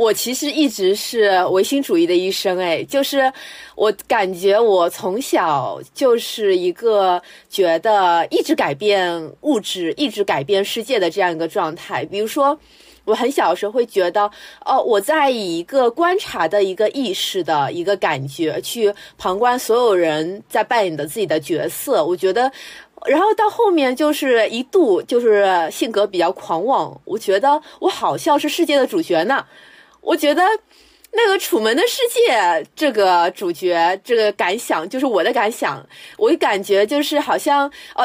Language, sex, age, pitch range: Chinese, female, 20-39, 200-320 Hz